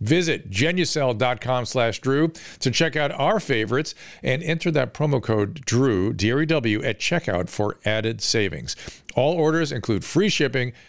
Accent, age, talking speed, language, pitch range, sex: American, 50-69, 145 wpm, English, 110-155 Hz, male